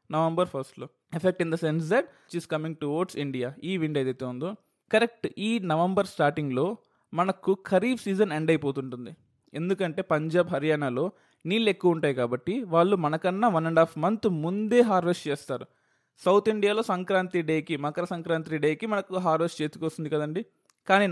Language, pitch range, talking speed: Telugu, 150-190 Hz, 150 wpm